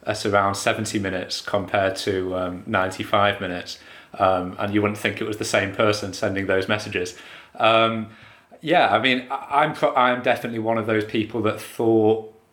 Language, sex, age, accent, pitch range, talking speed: English, male, 30-49, British, 105-115 Hz, 165 wpm